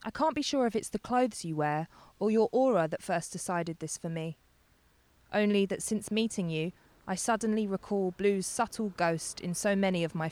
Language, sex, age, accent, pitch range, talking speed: English, female, 20-39, British, 160-205 Hz, 205 wpm